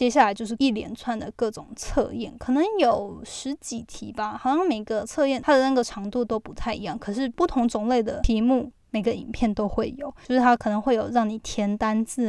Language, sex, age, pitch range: Chinese, female, 10-29, 215-255 Hz